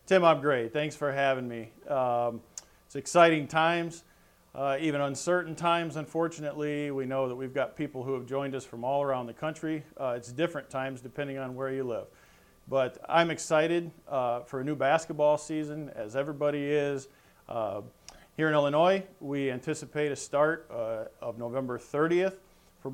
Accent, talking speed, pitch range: American, 170 wpm, 130-155 Hz